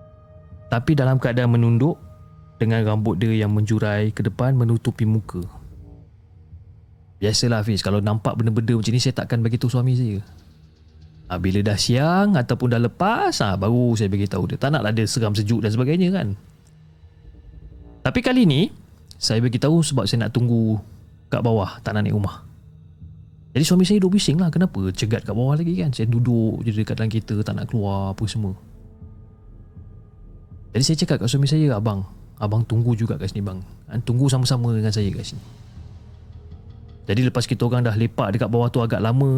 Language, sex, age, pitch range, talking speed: Malay, male, 30-49, 95-120 Hz, 170 wpm